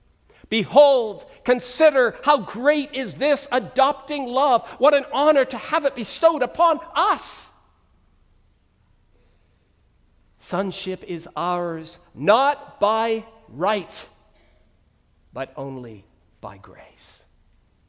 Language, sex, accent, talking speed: English, male, American, 90 wpm